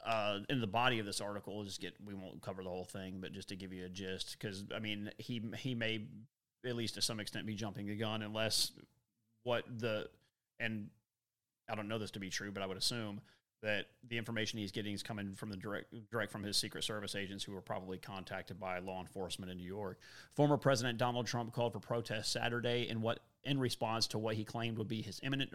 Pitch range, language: 105-120 Hz, English